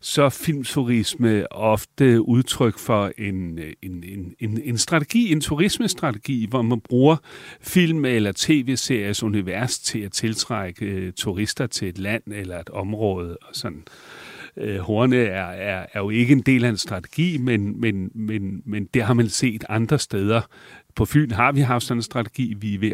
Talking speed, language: 160 wpm, Danish